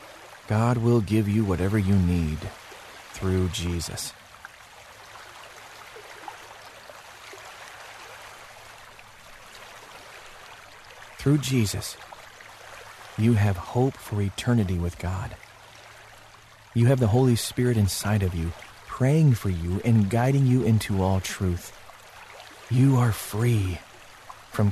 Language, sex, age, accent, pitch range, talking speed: English, male, 40-59, American, 95-120 Hz, 95 wpm